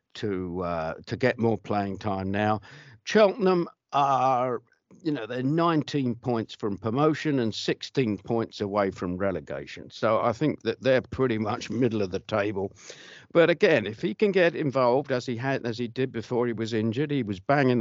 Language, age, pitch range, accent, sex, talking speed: English, 50-69, 100-140 Hz, British, male, 180 wpm